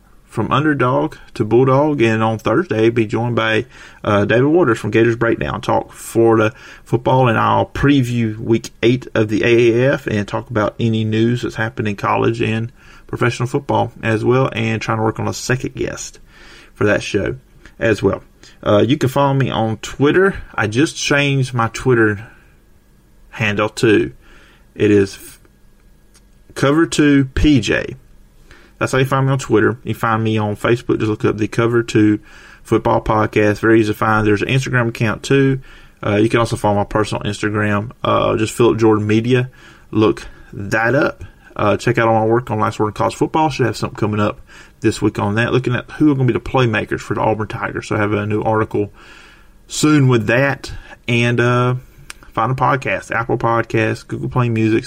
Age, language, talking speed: 30-49, English, 185 wpm